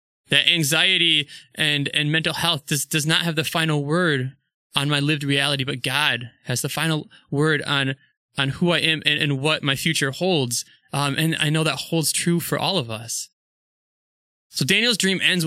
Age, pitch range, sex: 20-39, 135-170 Hz, male